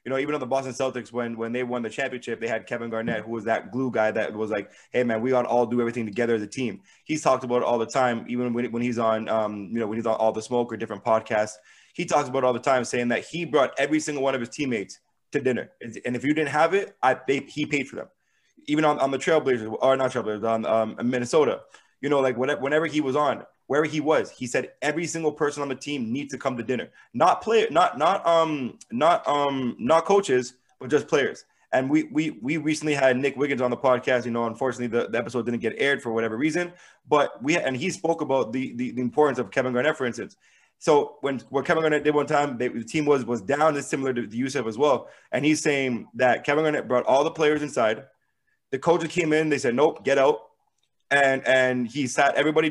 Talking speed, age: 255 wpm, 20-39